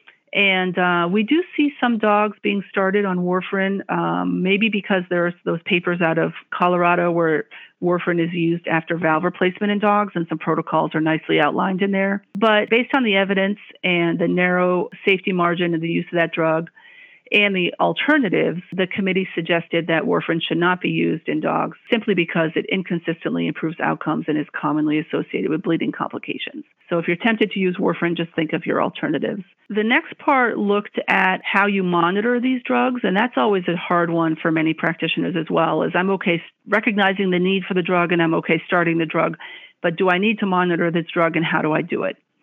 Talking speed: 200 wpm